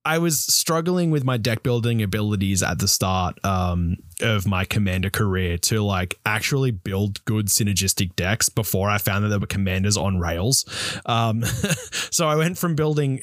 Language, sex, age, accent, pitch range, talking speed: English, male, 20-39, Australian, 95-125 Hz, 170 wpm